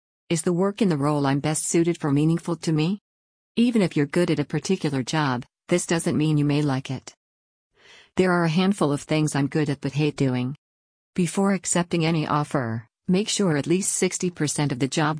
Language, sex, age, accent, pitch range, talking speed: English, female, 50-69, American, 140-170 Hz, 205 wpm